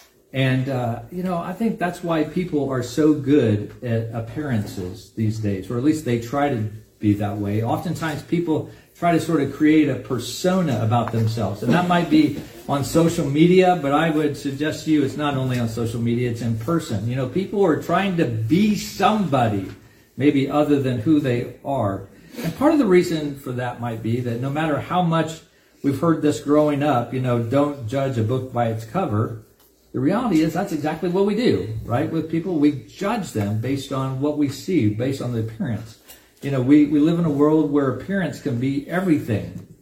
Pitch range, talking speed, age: 120-160 Hz, 205 wpm, 50-69